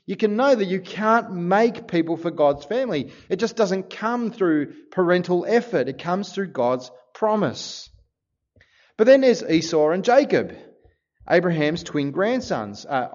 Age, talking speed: 30-49, 150 wpm